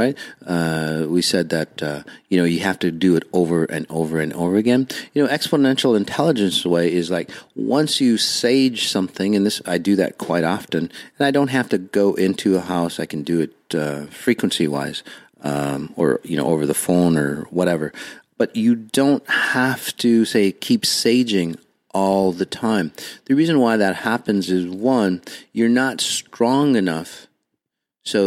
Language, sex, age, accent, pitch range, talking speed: English, male, 40-59, American, 80-110 Hz, 180 wpm